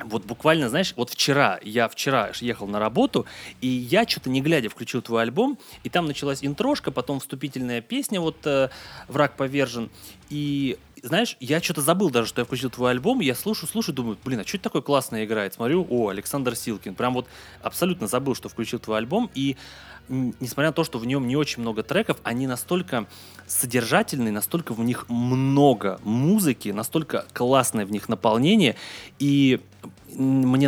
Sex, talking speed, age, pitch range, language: male, 175 wpm, 30-49, 115-140 Hz, Russian